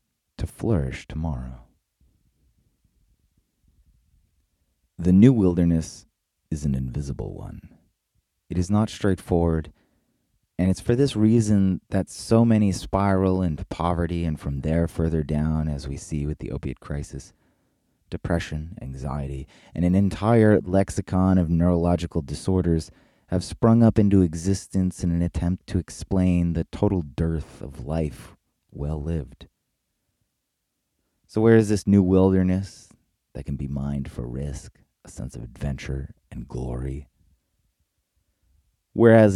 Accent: American